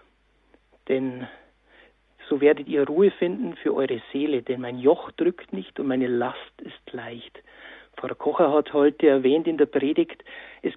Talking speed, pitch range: 155 wpm, 140-195 Hz